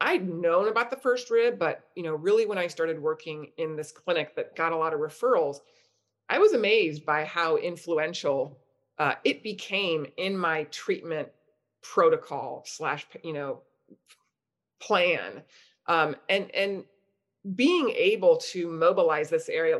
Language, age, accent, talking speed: English, 30-49, American, 145 wpm